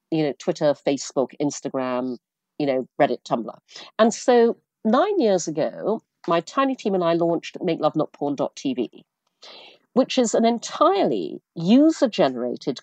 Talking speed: 135 wpm